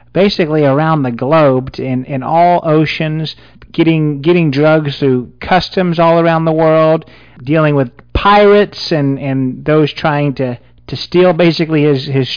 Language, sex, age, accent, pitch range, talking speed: English, male, 40-59, American, 130-155 Hz, 145 wpm